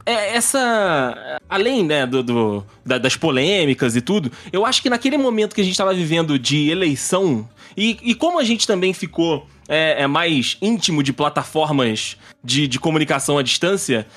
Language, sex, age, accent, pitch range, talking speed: Portuguese, male, 20-39, Brazilian, 135-195 Hz, 165 wpm